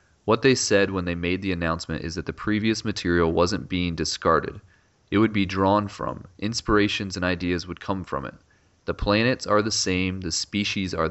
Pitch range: 85-95 Hz